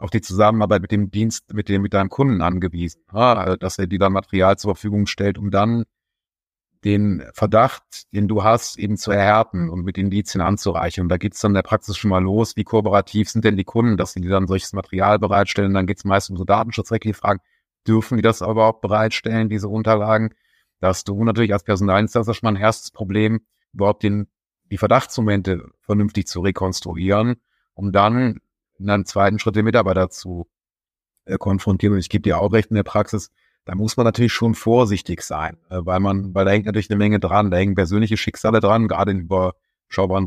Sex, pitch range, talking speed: male, 95-110 Hz, 210 wpm